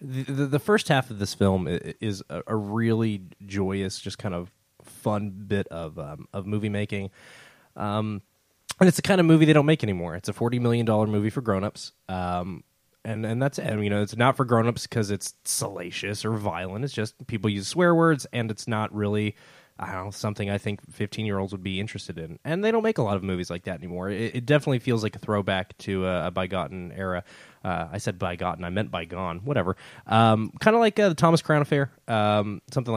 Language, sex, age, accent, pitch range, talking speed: English, male, 20-39, American, 95-130 Hz, 225 wpm